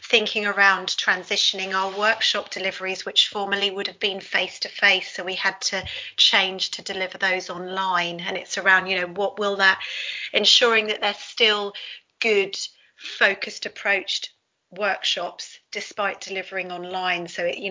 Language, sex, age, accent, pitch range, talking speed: English, female, 30-49, British, 185-205 Hz, 150 wpm